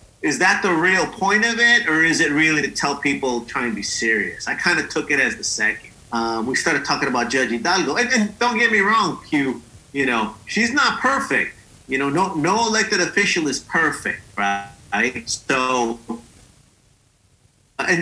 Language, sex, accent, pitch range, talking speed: English, male, American, 130-200 Hz, 190 wpm